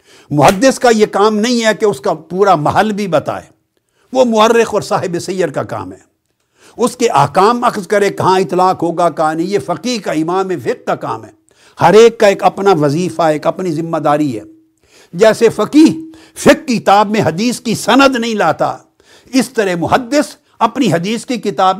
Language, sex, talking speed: Urdu, male, 185 wpm